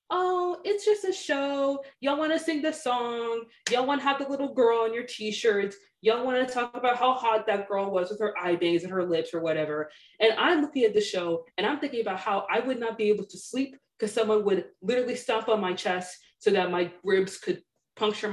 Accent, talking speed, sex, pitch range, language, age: American, 230 wpm, female, 185-275 Hz, English, 20-39